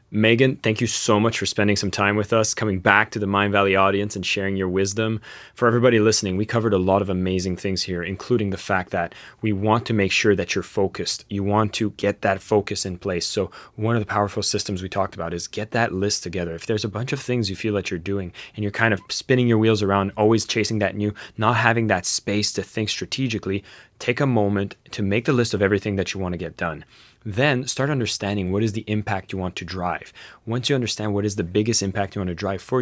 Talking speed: 250 wpm